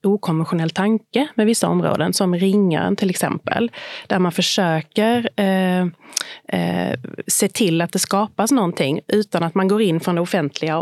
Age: 30-49